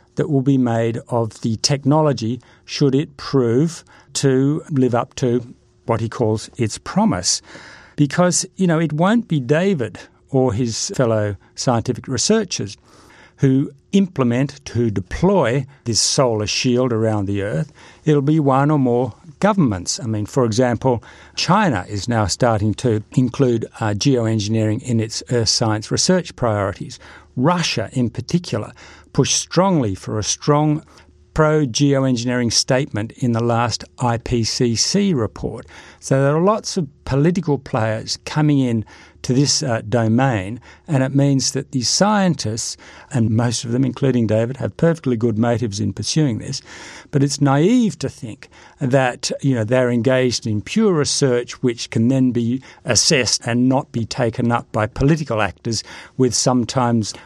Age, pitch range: 60-79, 115-140 Hz